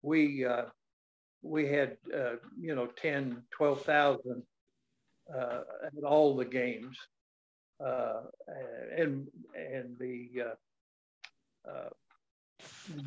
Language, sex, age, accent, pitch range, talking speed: English, male, 60-79, American, 125-150 Hz, 85 wpm